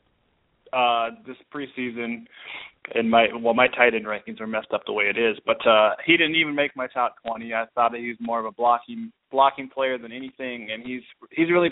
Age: 20-39